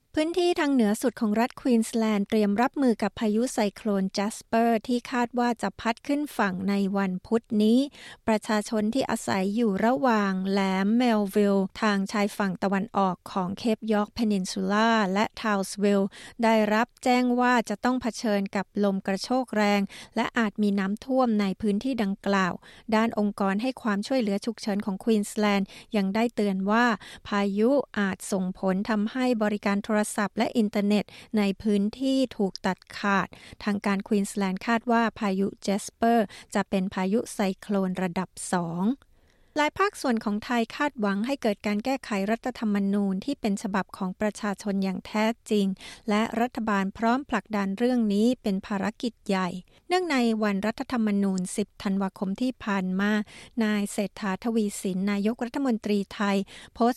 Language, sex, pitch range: Thai, female, 200-235 Hz